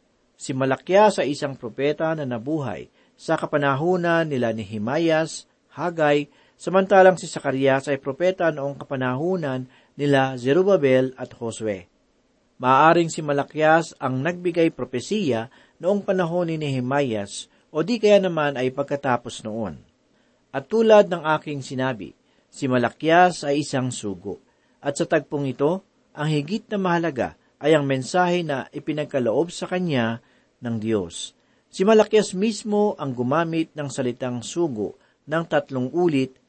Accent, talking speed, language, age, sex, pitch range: native, 130 wpm, Filipino, 50-69, male, 130-175 Hz